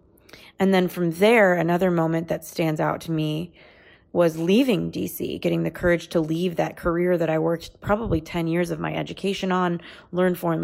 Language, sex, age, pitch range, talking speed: English, female, 20-39, 160-195 Hz, 185 wpm